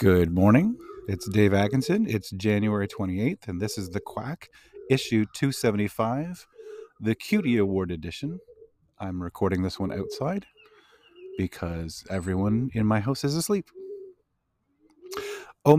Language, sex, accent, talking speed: English, male, American, 120 wpm